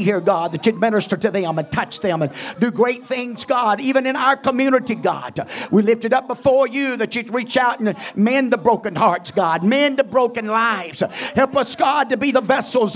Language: English